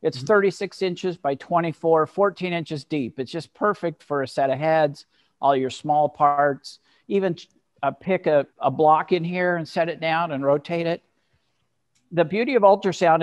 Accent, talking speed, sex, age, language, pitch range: American, 170 wpm, male, 50-69, English, 140-175 Hz